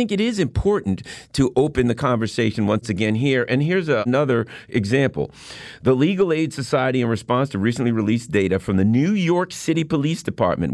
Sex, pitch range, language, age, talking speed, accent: male, 125-175 Hz, English, 50-69, 185 wpm, American